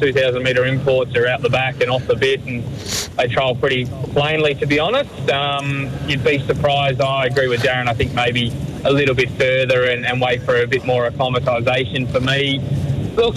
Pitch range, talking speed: 130-145 Hz, 200 wpm